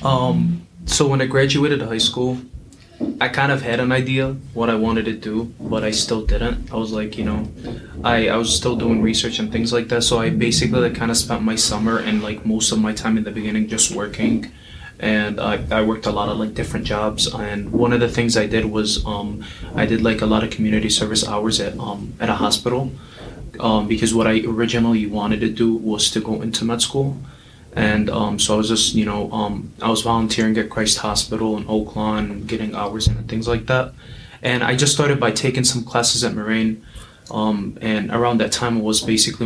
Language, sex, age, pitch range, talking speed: English, male, 20-39, 110-120 Hz, 220 wpm